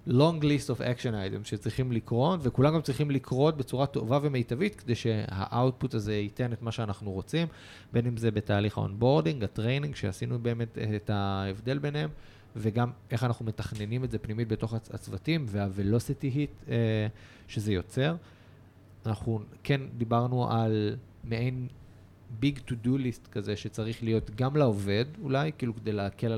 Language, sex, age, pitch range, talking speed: Hebrew, male, 30-49, 100-125 Hz, 150 wpm